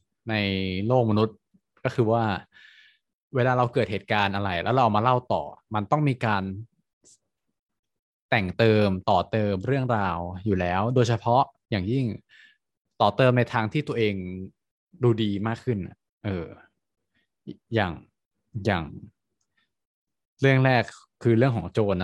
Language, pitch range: Thai, 100-125 Hz